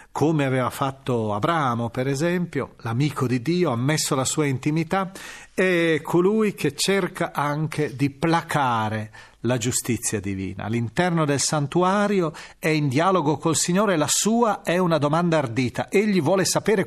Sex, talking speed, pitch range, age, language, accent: male, 145 wpm, 125-175 Hz, 40-59, Italian, native